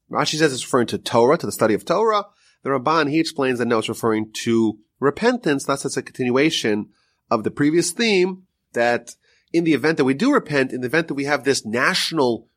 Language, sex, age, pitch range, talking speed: English, male, 30-49, 115-175 Hz, 215 wpm